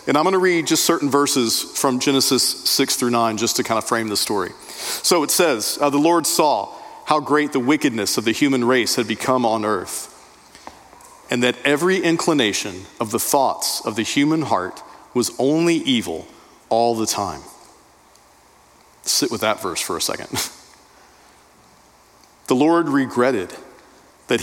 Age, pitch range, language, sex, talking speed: 40-59, 115-145 Hz, English, male, 160 wpm